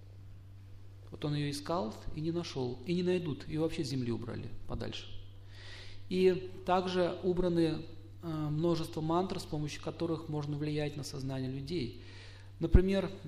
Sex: male